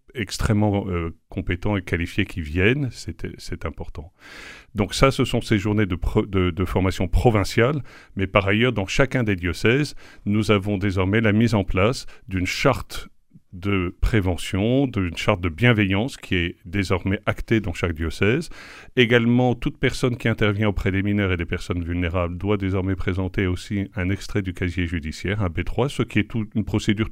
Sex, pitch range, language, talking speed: male, 90-110 Hz, French, 170 wpm